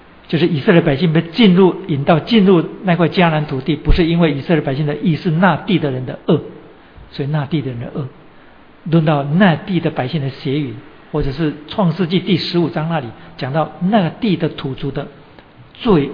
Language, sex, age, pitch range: Chinese, male, 60-79, 140-170 Hz